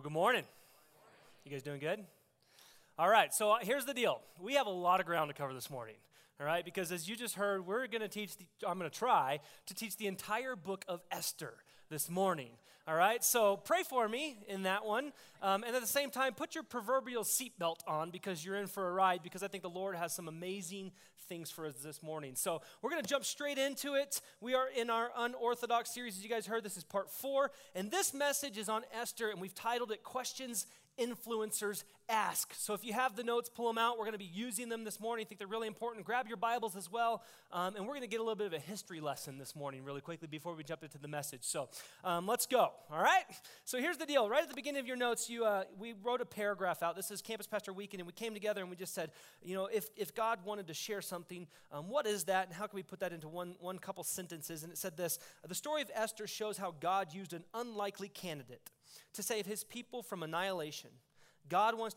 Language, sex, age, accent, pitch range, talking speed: English, male, 30-49, American, 175-235 Hz, 245 wpm